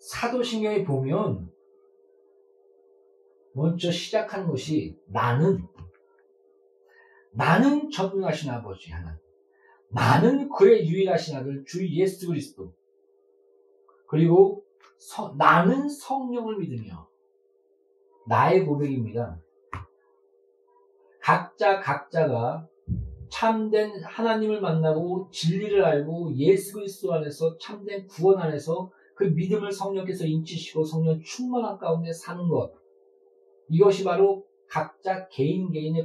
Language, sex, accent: Korean, male, native